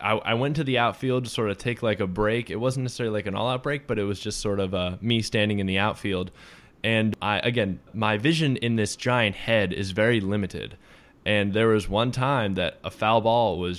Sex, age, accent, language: male, 10-29, American, English